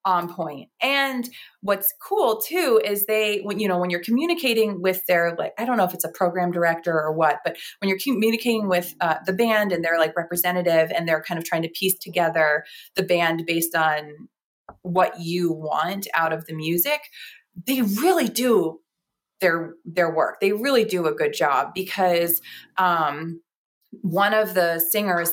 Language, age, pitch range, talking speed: English, 30-49, 165-210 Hz, 180 wpm